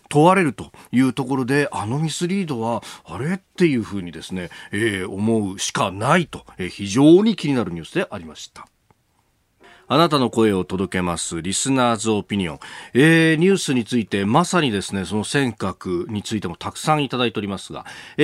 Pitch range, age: 105-170 Hz, 40-59